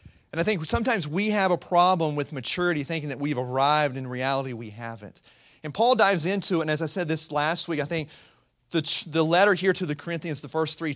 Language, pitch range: English, 130-175 Hz